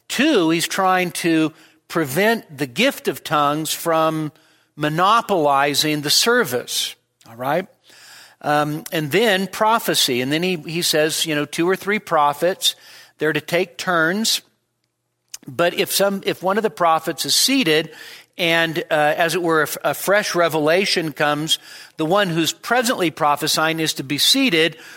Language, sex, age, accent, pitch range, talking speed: English, male, 50-69, American, 145-180 Hz, 150 wpm